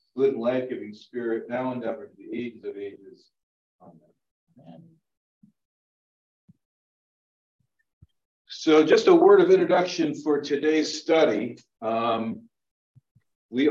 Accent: American